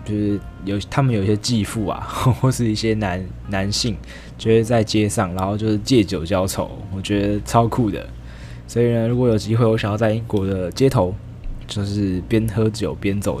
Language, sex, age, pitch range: Chinese, male, 20-39, 90-115 Hz